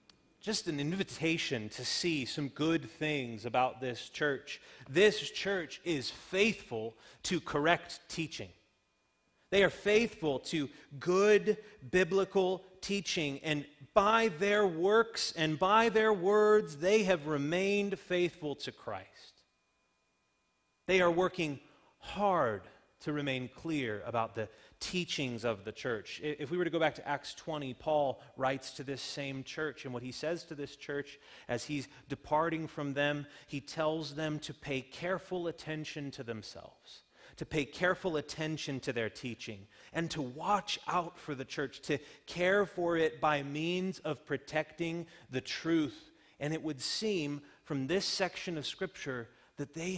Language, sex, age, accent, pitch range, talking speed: English, male, 30-49, American, 135-180 Hz, 150 wpm